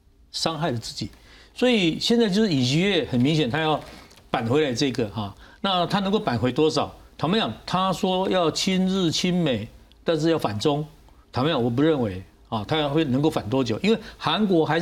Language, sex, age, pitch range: Chinese, male, 50-69, 120-185 Hz